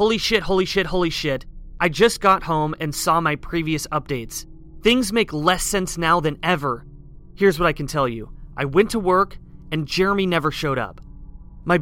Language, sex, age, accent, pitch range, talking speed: English, male, 30-49, American, 145-185 Hz, 195 wpm